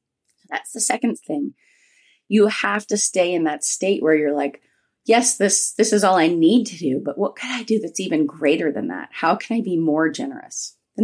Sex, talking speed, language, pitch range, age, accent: female, 215 wpm, English, 160-255 Hz, 30-49, American